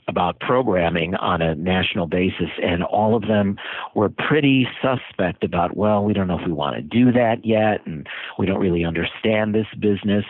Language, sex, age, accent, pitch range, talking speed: English, male, 50-69, American, 85-105 Hz, 185 wpm